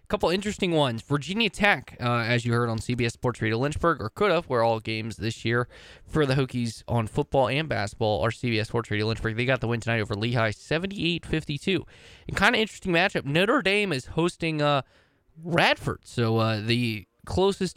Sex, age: male, 20-39